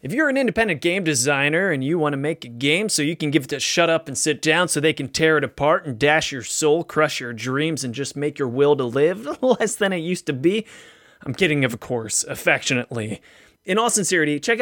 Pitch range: 140-195 Hz